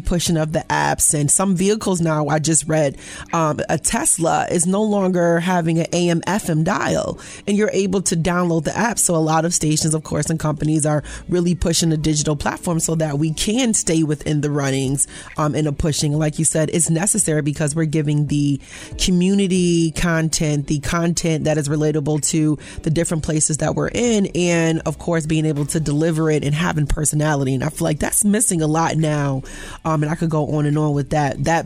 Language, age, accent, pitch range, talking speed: English, 30-49, American, 150-175 Hz, 210 wpm